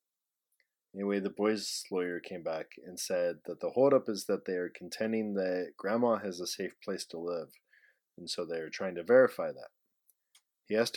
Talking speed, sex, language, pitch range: 185 wpm, male, English, 90-105 Hz